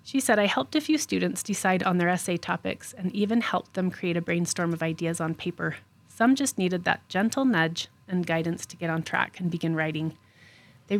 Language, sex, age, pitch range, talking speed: English, female, 30-49, 165-205 Hz, 215 wpm